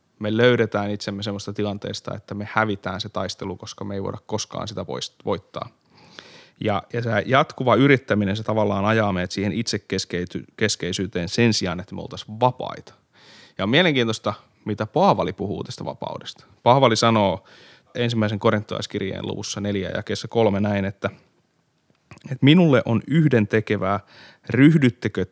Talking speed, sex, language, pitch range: 140 wpm, male, Finnish, 100-120 Hz